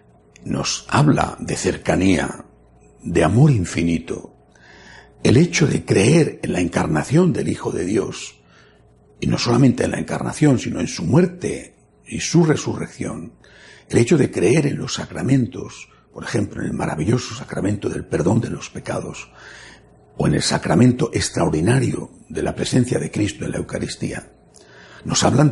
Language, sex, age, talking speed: Spanish, male, 60-79, 150 wpm